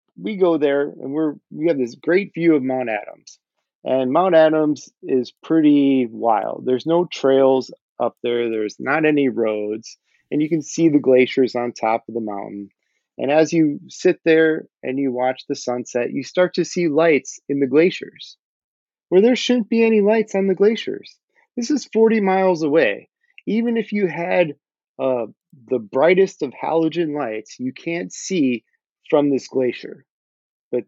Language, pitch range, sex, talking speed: English, 120-170 Hz, male, 170 wpm